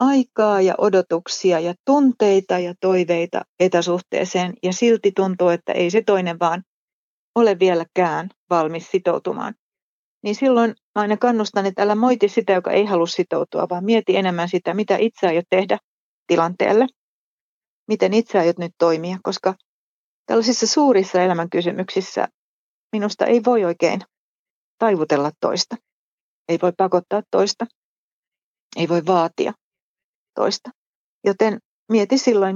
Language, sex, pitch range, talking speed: Finnish, female, 175-210 Hz, 125 wpm